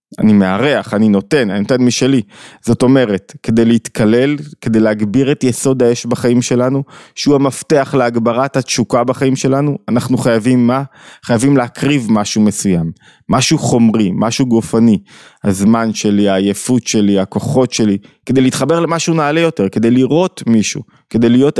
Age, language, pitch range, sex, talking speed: 20-39, Hebrew, 115-150 Hz, male, 145 wpm